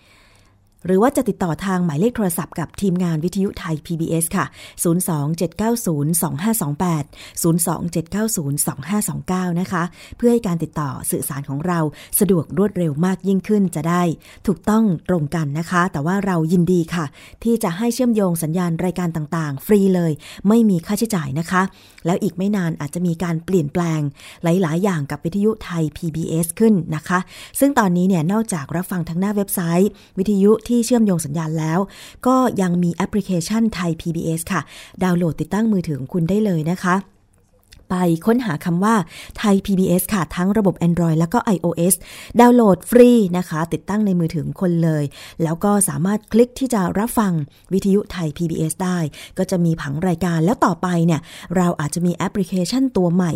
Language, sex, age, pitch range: Thai, female, 20-39, 160-200 Hz